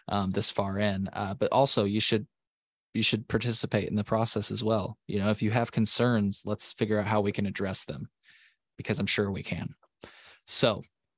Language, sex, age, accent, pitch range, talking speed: English, male, 20-39, American, 105-115 Hz, 200 wpm